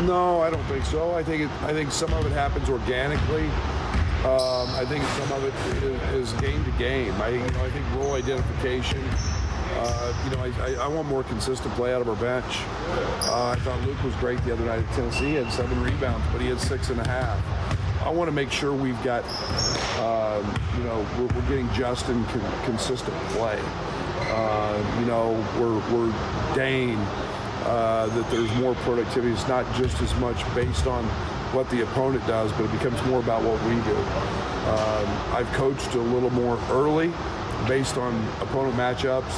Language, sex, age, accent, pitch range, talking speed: English, male, 40-59, American, 105-125 Hz, 190 wpm